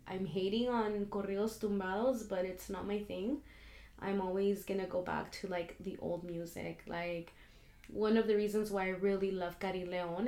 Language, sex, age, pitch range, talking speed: English, female, 20-39, 180-210 Hz, 185 wpm